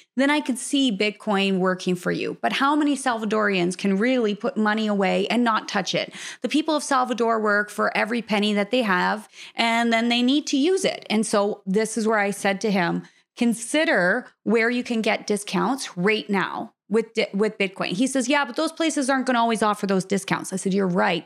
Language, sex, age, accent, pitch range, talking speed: English, female, 30-49, American, 200-250 Hz, 215 wpm